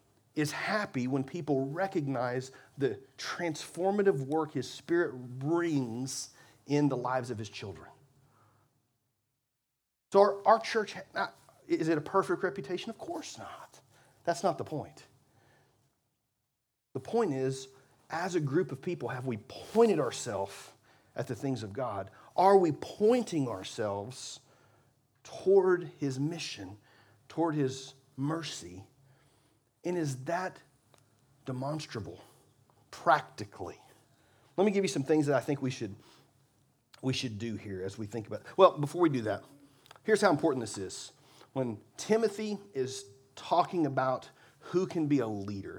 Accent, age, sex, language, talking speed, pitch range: American, 40-59, male, English, 140 wpm, 120-155 Hz